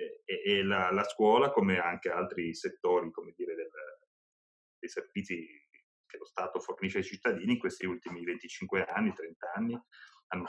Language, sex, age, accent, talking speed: Italian, male, 30-49, native, 155 wpm